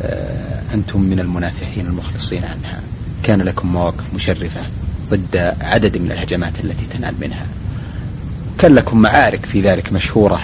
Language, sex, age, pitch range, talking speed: Arabic, male, 30-49, 95-120 Hz, 125 wpm